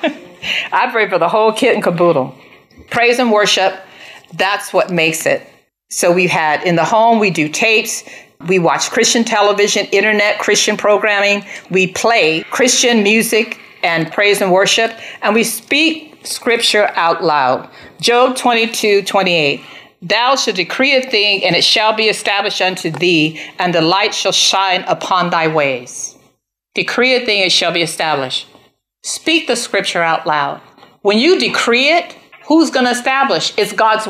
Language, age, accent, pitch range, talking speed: English, 50-69, American, 180-235 Hz, 160 wpm